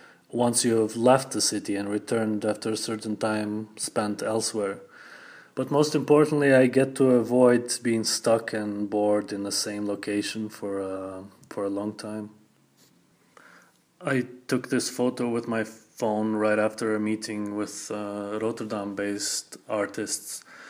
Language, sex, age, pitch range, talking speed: English, male, 30-49, 105-125 Hz, 145 wpm